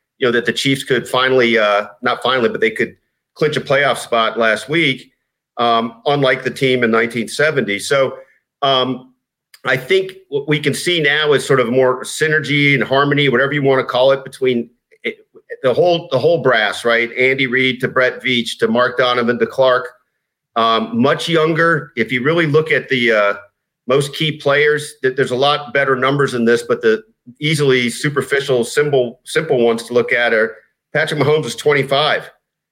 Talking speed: 185 wpm